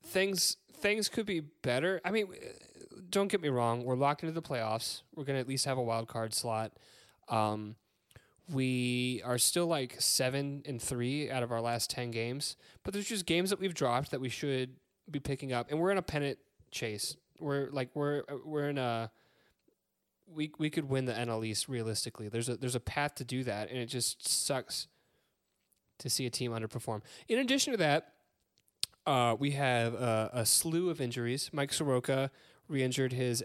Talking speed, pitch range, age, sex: 190 wpm, 120-150 Hz, 20-39, male